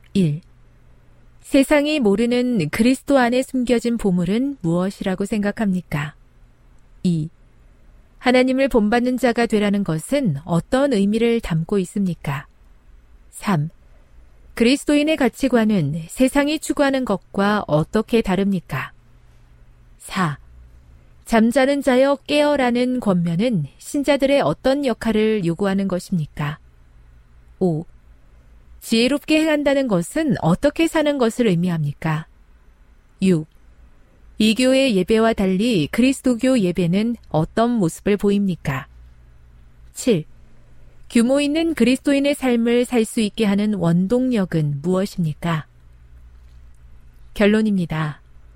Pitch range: 150-245 Hz